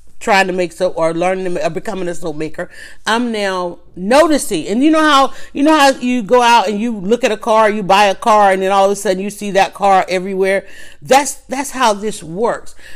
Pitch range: 185-240 Hz